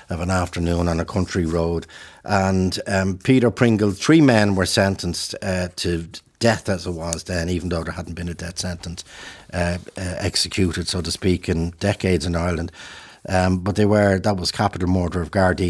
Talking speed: 190 wpm